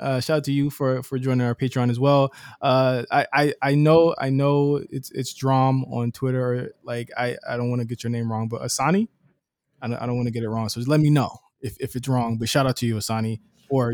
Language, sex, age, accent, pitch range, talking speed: English, male, 20-39, American, 120-145 Hz, 265 wpm